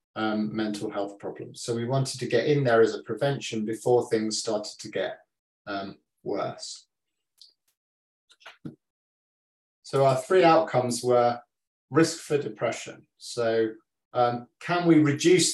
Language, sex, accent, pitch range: English, male, British, 110-135 Hz